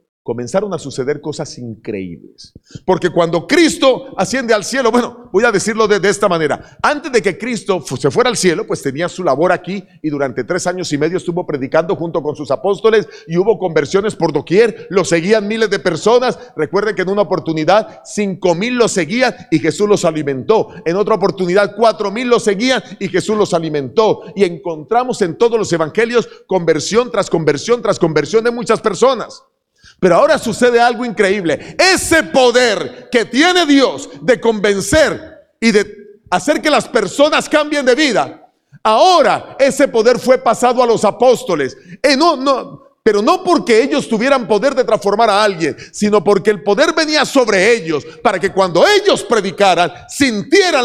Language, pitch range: Spanish, 190-265 Hz